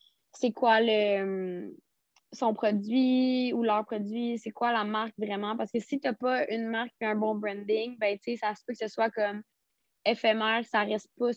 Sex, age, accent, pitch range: female, 20-39, Canadian, 200-235 Hz